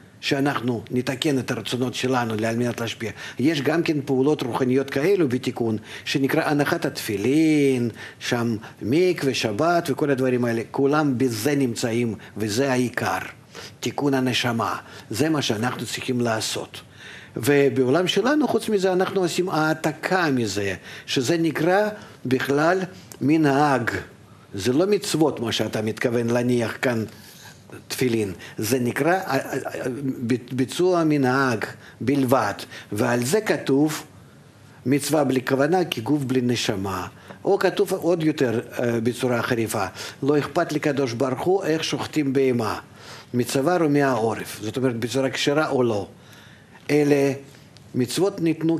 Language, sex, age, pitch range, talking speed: Hebrew, male, 50-69, 115-150 Hz, 120 wpm